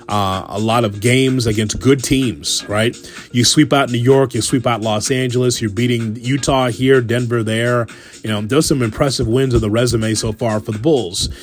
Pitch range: 115-140 Hz